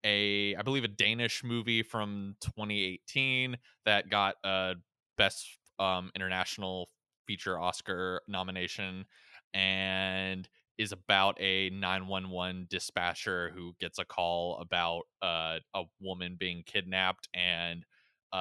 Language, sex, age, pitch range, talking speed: English, male, 20-39, 95-115 Hz, 115 wpm